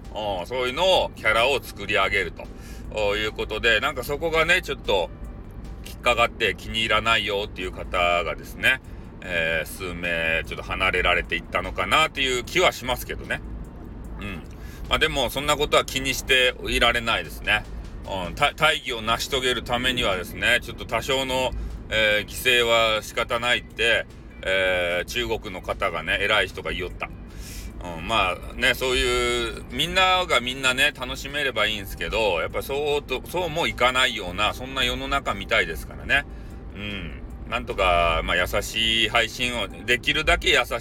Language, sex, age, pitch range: Japanese, male, 40-59, 90-130 Hz